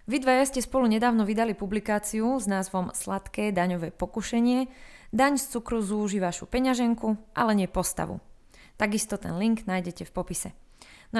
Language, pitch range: Slovak, 190-235 Hz